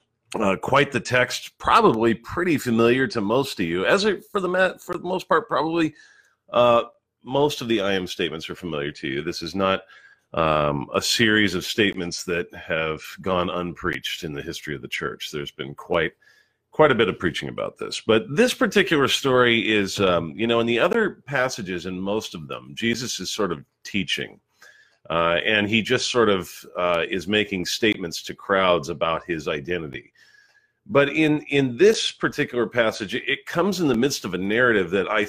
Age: 40-59